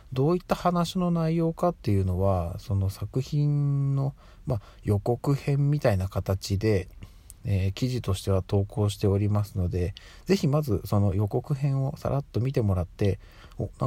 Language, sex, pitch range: Japanese, male, 95-120 Hz